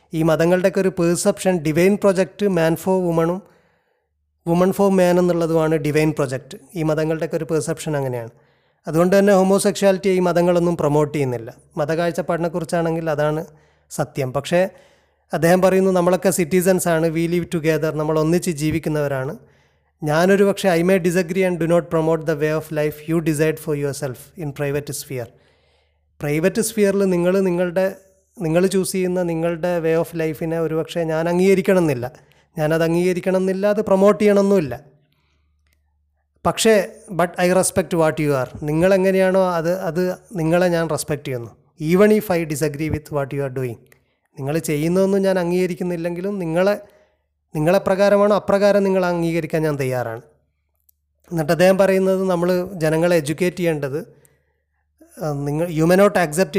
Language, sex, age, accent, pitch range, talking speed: Malayalam, male, 30-49, native, 150-185 Hz, 135 wpm